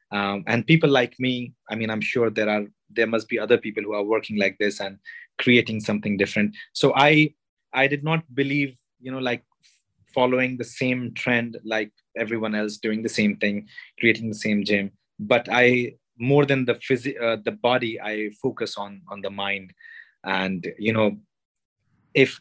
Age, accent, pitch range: 30-49, Indian, 110-135 Hz